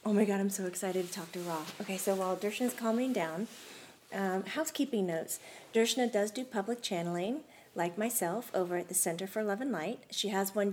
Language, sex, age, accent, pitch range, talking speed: English, female, 30-49, American, 190-230 Hz, 205 wpm